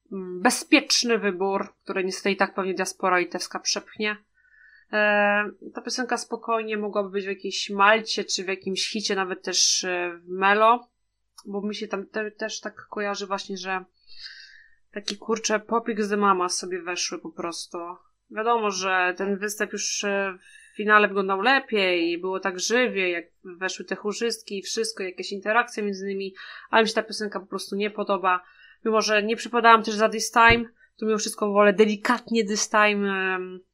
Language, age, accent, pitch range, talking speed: Polish, 20-39, native, 190-230 Hz, 160 wpm